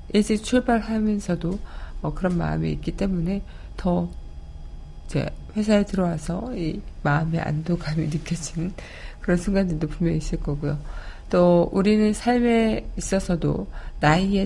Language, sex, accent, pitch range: Korean, female, native, 155-200 Hz